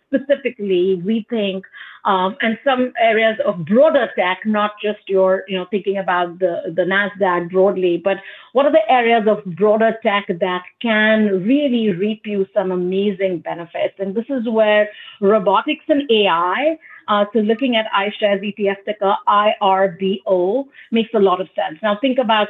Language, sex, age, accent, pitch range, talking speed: English, female, 50-69, Indian, 195-240 Hz, 160 wpm